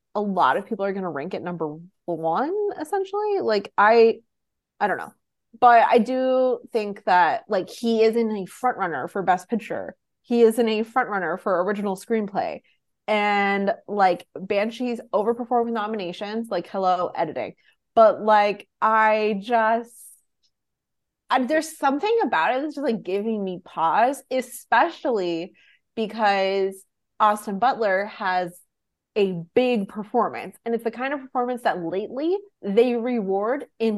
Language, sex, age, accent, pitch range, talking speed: English, female, 30-49, American, 195-240 Hz, 145 wpm